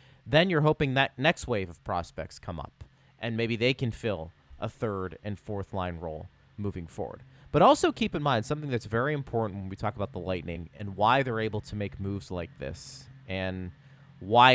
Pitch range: 105-135 Hz